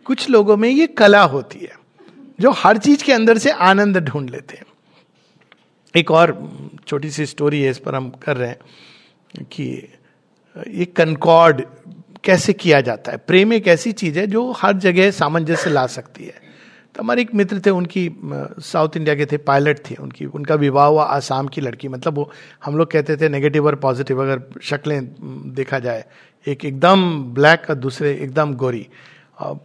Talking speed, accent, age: 175 wpm, Indian, 50-69